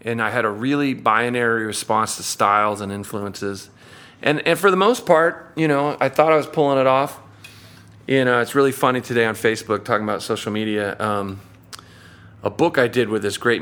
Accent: American